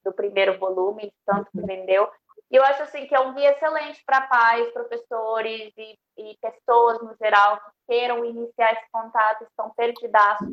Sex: female